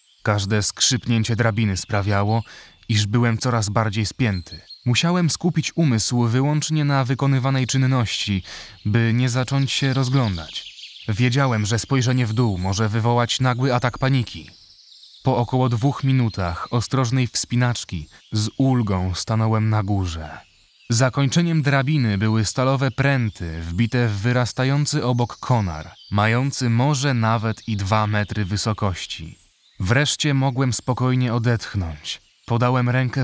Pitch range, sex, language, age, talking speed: 105-130 Hz, male, Polish, 20-39, 115 wpm